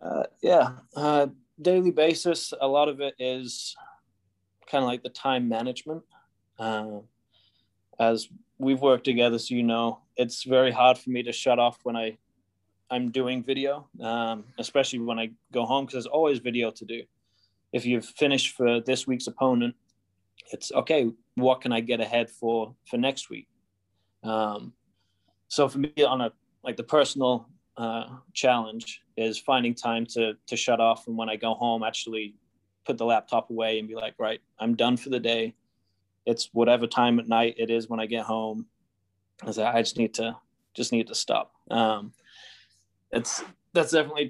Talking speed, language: 175 wpm, English